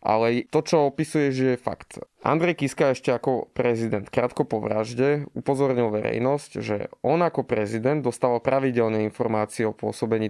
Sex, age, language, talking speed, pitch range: male, 20-39, Slovak, 150 wpm, 110-140 Hz